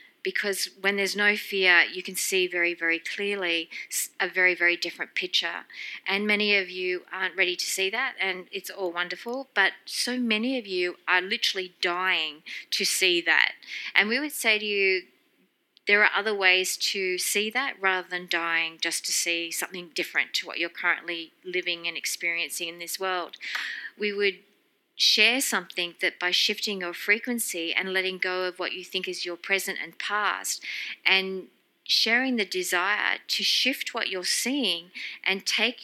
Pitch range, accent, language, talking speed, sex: 175-205 Hz, Australian, English, 170 wpm, female